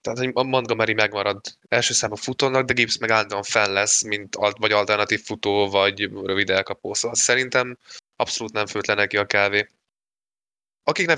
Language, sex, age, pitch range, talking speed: Hungarian, male, 20-39, 100-115 Hz, 165 wpm